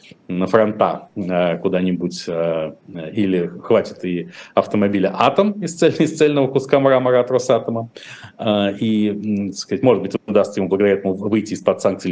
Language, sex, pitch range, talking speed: Russian, male, 95-135 Hz, 135 wpm